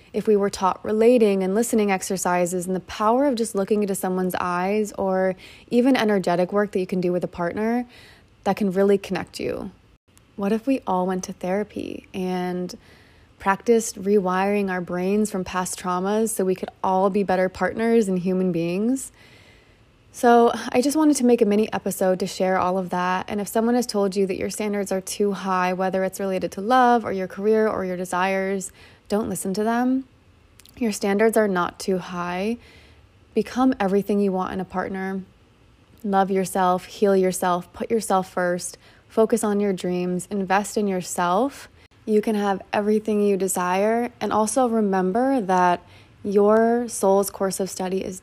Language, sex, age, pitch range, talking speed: English, female, 20-39, 185-215 Hz, 175 wpm